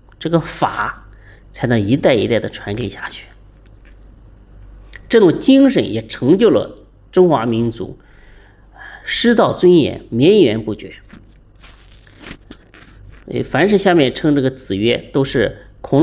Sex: male